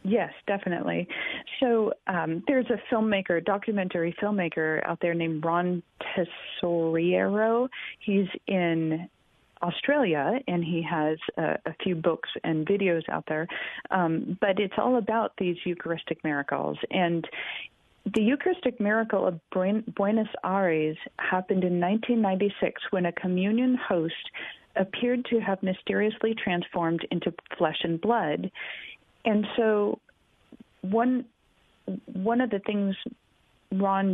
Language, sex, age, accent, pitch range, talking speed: English, female, 40-59, American, 175-220 Hz, 120 wpm